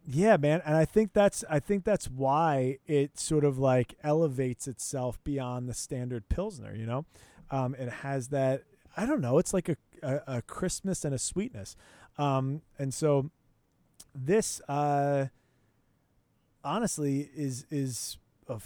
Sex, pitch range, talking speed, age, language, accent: male, 130-155 Hz, 150 wpm, 30-49, English, American